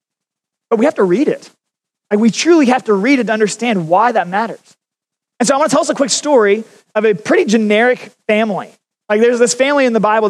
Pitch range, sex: 205-255 Hz, male